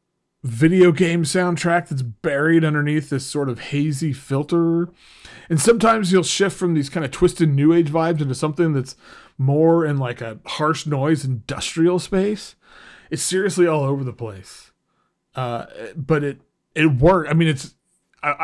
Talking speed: 160 wpm